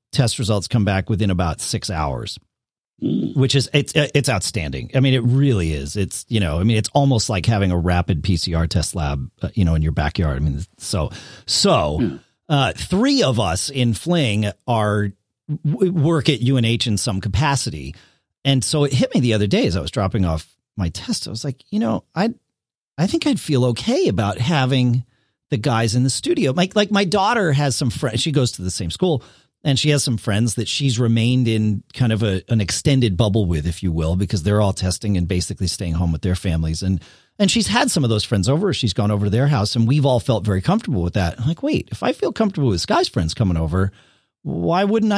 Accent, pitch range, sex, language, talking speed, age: American, 95-145 Hz, male, English, 220 wpm, 40-59